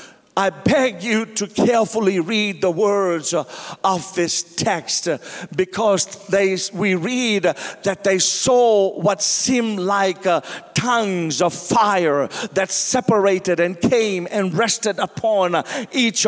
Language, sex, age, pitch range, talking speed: English, male, 50-69, 200-245 Hz, 120 wpm